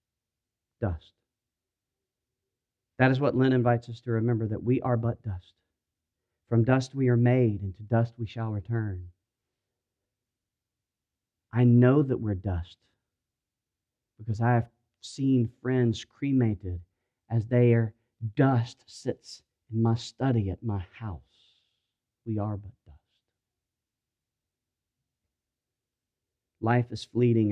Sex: male